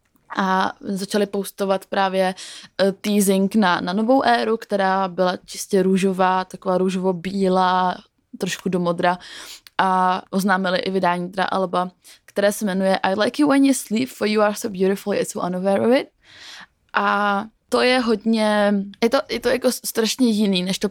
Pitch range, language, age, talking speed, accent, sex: 190-225 Hz, Czech, 20-39, 165 wpm, native, female